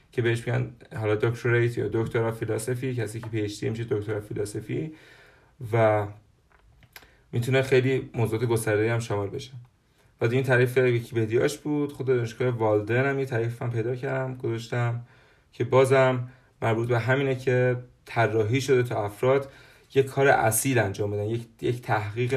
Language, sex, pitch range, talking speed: Persian, male, 110-130 Hz, 140 wpm